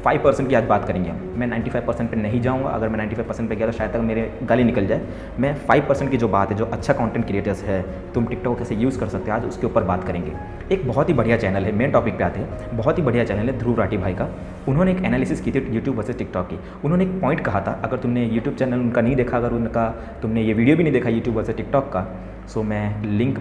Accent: native